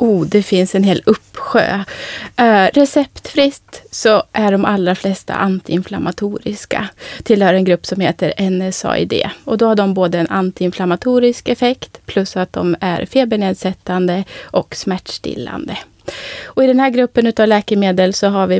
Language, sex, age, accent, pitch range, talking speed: Swedish, female, 30-49, native, 185-230 Hz, 145 wpm